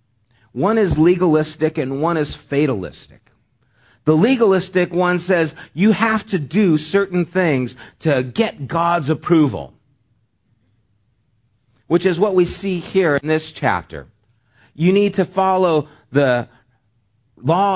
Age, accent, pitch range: 40-59, American, 110-165 Hz